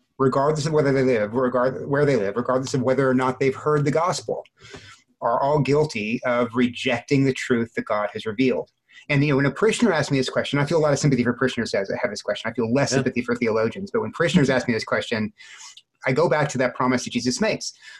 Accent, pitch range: American, 120-145 Hz